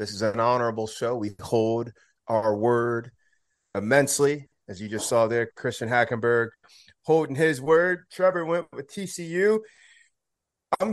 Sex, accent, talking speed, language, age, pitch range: male, American, 135 wpm, English, 30-49, 115-140 Hz